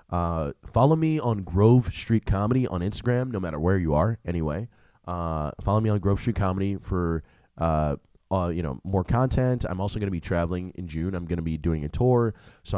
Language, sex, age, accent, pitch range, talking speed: English, male, 20-39, American, 85-120 Hz, 210 wpm